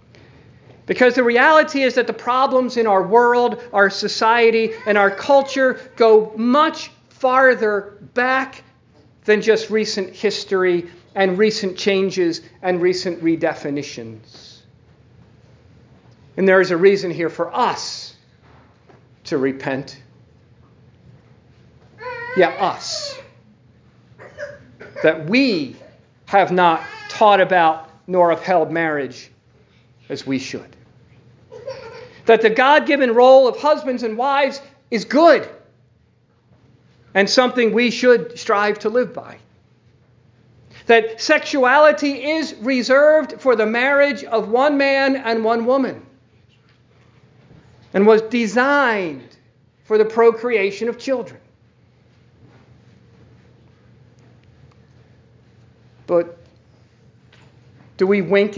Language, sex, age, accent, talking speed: English, male, 50-69, American, 100 wpm